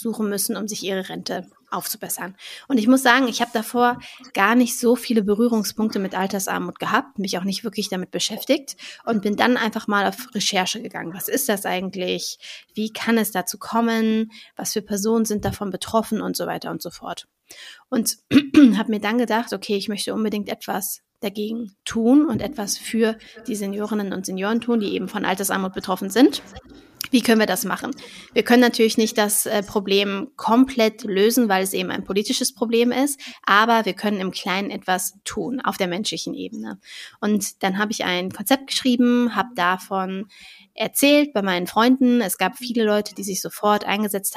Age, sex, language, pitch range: 30-49, female, German, 195-235 Hz